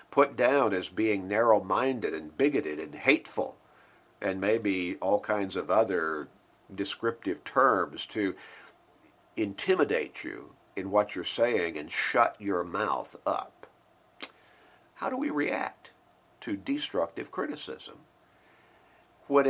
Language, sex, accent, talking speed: English, male, American, 115 wpm